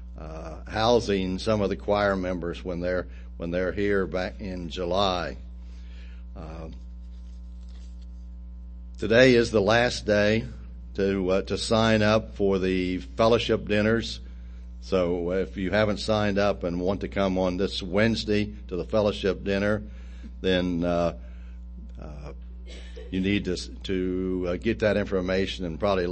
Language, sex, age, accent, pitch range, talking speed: English, male, 60-79, American, 65-100 Hz, 140 wpm